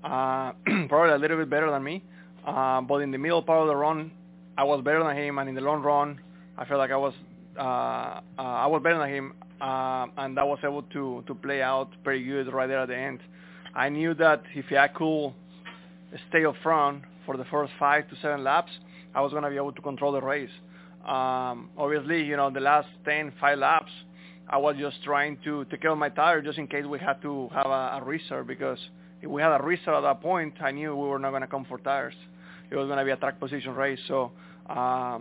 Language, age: English, 20-39